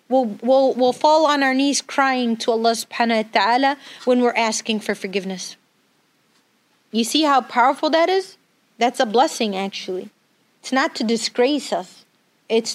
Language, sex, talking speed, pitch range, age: English, female, 160 wpm, 230-300 Hz, 30-49